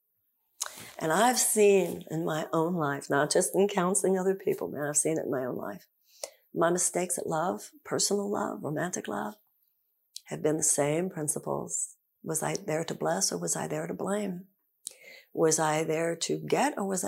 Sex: female